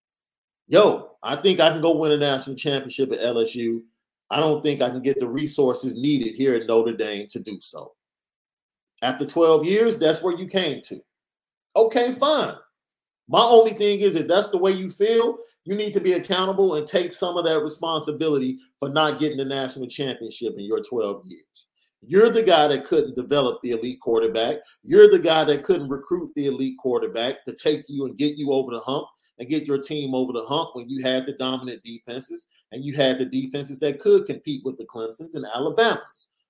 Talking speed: 200 wpm